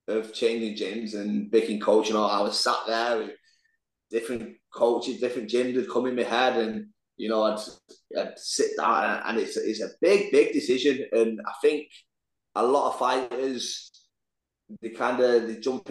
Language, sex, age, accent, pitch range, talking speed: English, male, 20-39, British, 110-135 Hz, 180 wpm